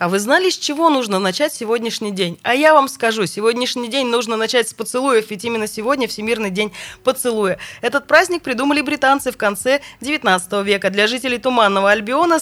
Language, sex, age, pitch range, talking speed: Russian, female, 20-39, 205-285 Hz, 180 wpm